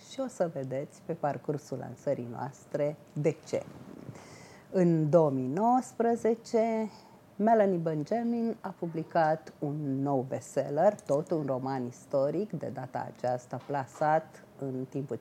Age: 30-49